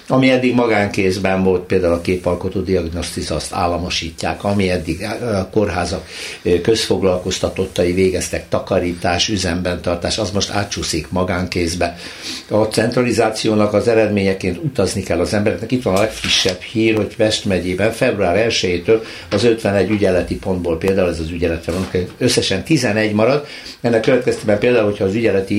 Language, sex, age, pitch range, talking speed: Hungarian, male, 60-79, 90-110 Hz, 135 wpm